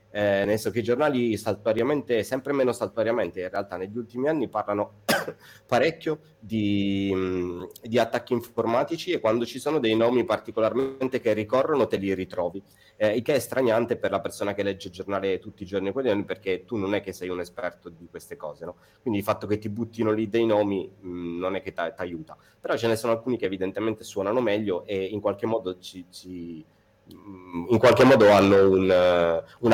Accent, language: native, Italian